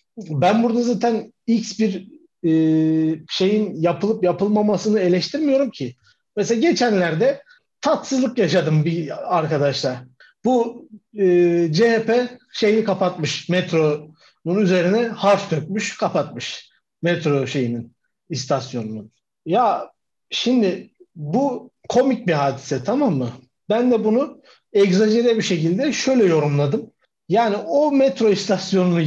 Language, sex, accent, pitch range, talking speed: Turkish, male, native, 170-235 Hz, 105 wpm